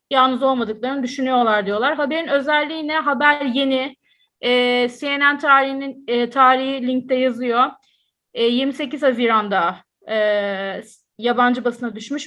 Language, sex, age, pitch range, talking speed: Turkish, female, 30-49, 230-280 Hz, 110 wpm